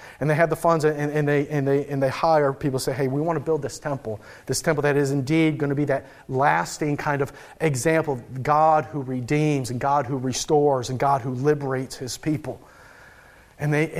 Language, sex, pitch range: English, male, 140-185 Hz